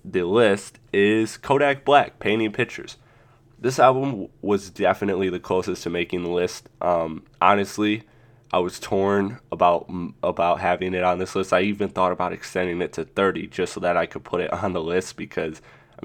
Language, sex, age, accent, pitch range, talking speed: English, male, 20-39, American, 90-110 Hz, 185 wpm